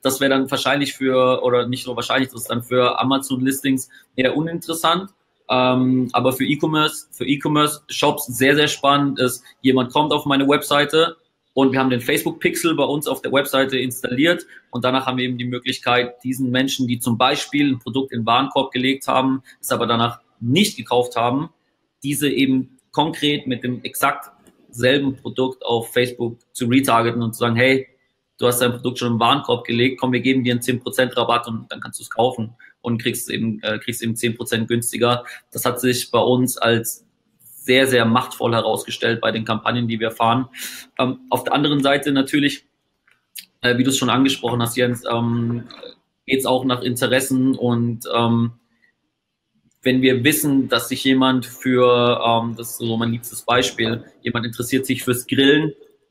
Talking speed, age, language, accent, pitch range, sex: 180 wpm, 30-49, German, German, 120-135 Hz, male